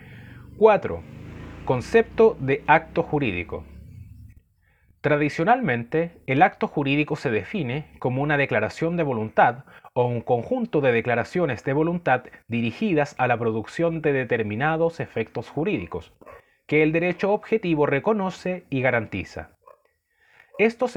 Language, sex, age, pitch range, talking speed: Spanish, male, 30-49, 130-190 Hz, 110 wpm